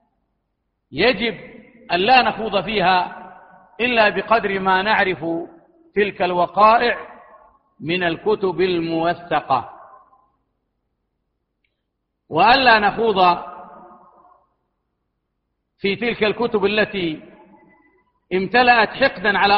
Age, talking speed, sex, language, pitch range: 50-69, 70 wpm, male, Arabic, 185-230 Hz